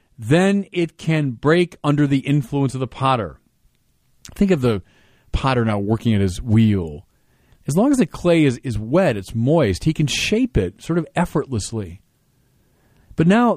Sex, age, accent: male, 40-59, American